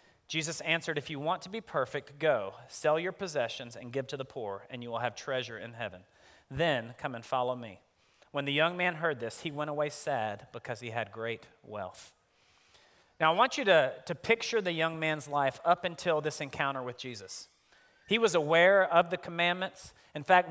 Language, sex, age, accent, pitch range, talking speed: English, male, 40-59, American, 140-180 Hz, 200 wpm